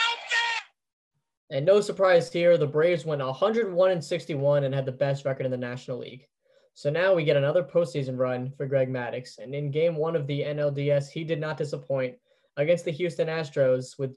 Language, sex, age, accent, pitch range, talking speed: English, male, 10-29, American, 135-165 Hz, 185 wpm